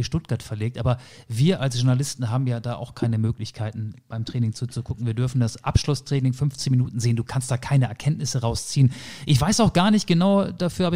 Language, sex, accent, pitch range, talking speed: German, male, German, 120-170 Hz, 195 wpm